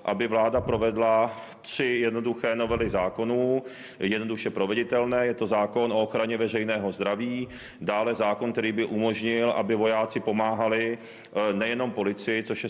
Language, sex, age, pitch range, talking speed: Czech, male, 40-59, 110-120 Hz, 130 wpm